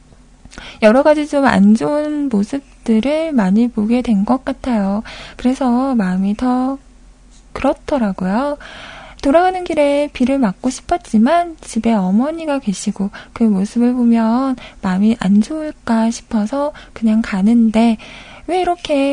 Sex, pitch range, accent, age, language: female, 220-295 Hz, native, 20-39, Korean